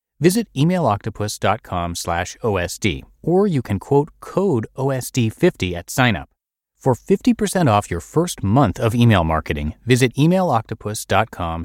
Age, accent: 30-49, American